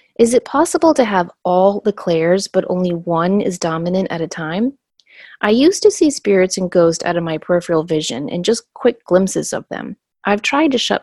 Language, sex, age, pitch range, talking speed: English, female, 30-49, 175-235 Hz, 205 wpm